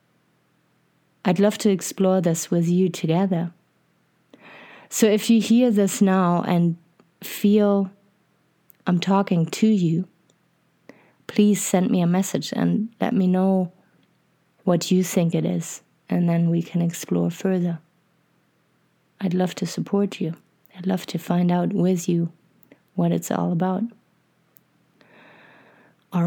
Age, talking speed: 30-49, 130 wpm